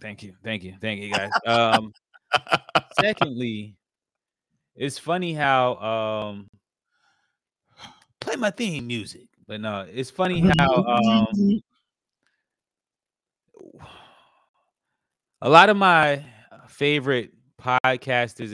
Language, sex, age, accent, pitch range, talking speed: English, male, 30-49, American, 105-125 Hz, 95 wpm